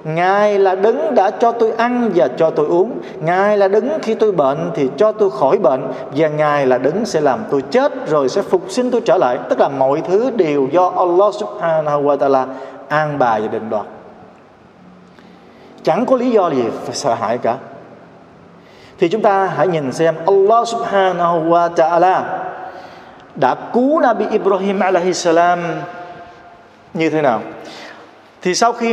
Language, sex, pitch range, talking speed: Vietnamese, male, 155-220 Hz, 170 wpm